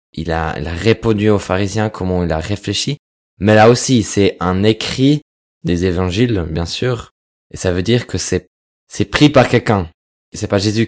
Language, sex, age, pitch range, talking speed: French, male, 20-39, 90-110 Hz, 195 wpm